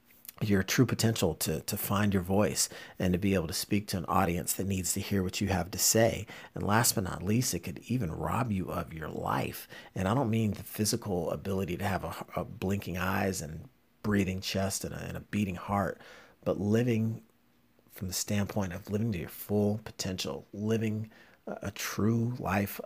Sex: male